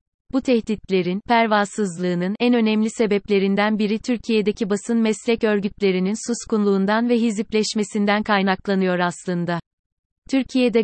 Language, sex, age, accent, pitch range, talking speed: Turkish, female, 30-49, native, 195-220 Hz, 95 wpm